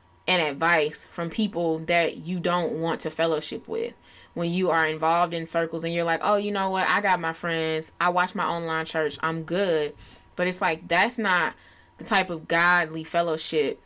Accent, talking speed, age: American, 195 wpm, 20-39